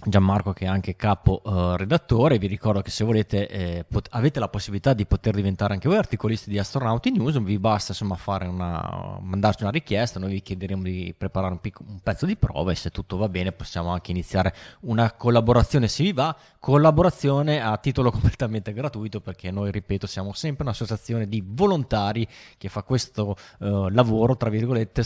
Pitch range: 95-115 Hz